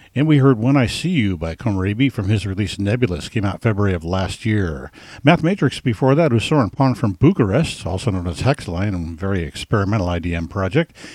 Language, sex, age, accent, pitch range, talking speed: English, male, 50-69, American, 100-135 Hz, 195 wpm